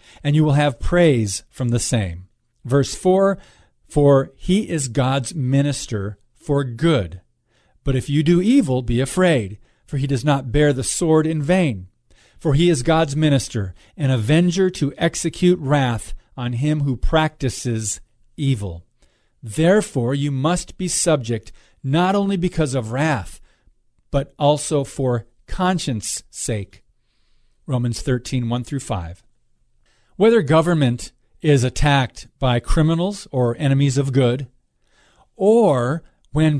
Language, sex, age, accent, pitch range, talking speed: English, male, 40-59, American, 120-160 Hz, 130 wpm